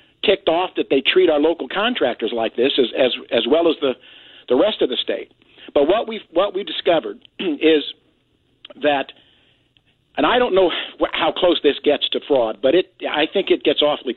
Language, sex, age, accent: English, male, 50-69, American